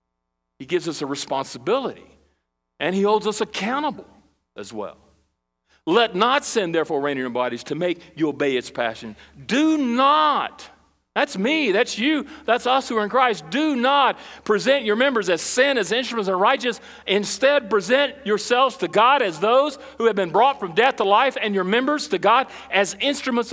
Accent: American